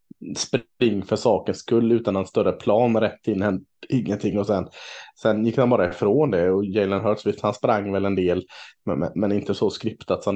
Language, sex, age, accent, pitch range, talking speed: Swedish, male, 20-39, Norwegian, 95-120 Hz, 190 wpm